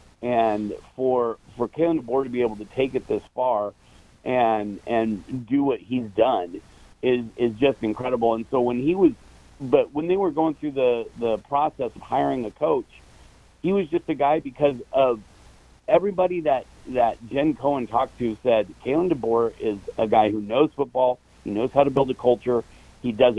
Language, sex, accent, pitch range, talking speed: English, male, American, 115-140 Hz, 185 wpm